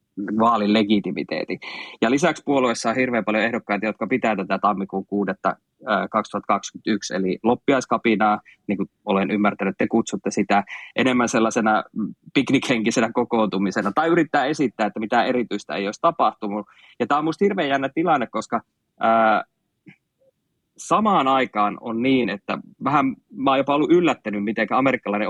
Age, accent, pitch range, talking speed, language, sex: 20-39, native, 100-115 Hz, 135 wpm, Finnish, male